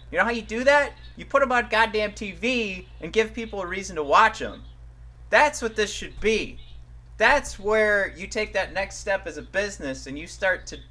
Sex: male